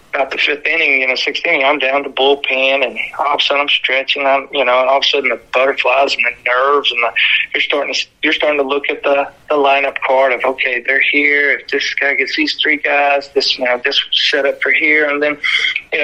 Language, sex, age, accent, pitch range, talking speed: English, male, 40-59, American, 130-145 Hz, 255 wpm